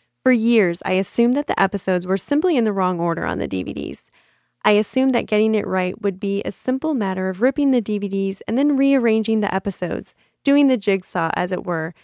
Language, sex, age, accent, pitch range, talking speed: English, female, 10-29, American, 180-240 Hz, 210 wpm